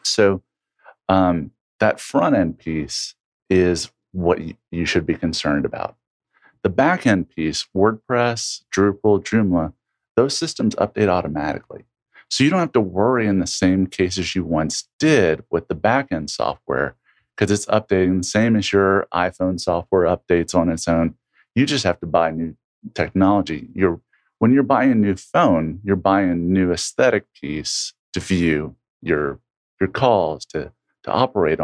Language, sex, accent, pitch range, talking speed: English, male, American, 85-105 Hz, 155 wpm